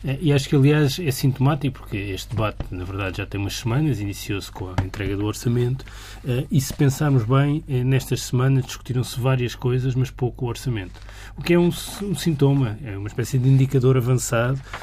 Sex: male